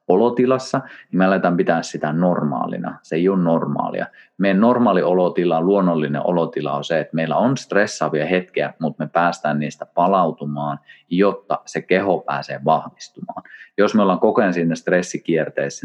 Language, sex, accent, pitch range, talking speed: Finnish, male, native, 75-95 Hz, 150 wpm